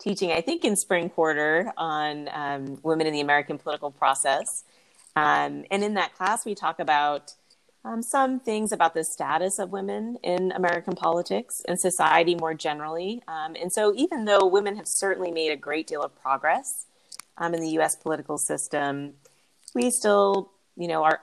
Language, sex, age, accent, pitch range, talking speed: English, female, 30-49, American, 150-180 Hz, 175 wpm